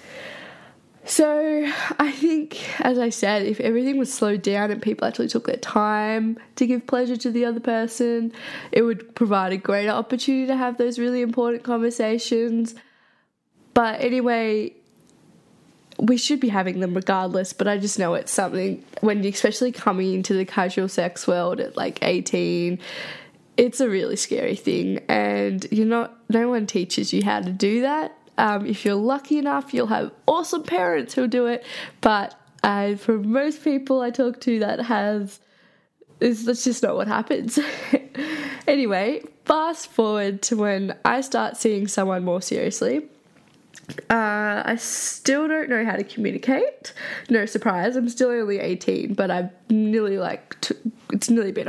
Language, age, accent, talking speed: English, 10-29, Australian, 160 wpm